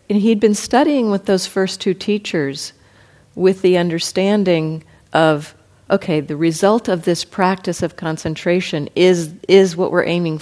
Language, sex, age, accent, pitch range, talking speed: English, female, 50-69, American, 155-205 Hz, 150 wpm